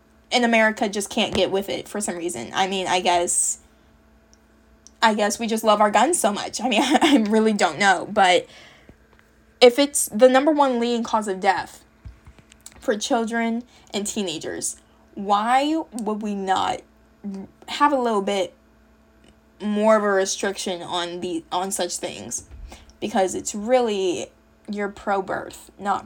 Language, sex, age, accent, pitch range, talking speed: English, female, 10-29, American, 190-265 Hz, 155 wpm